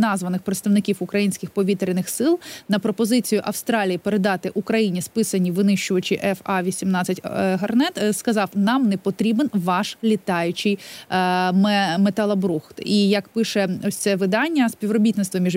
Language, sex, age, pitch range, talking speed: Ukrainian, female, 20-39, 195-230 Hz, 110 wpm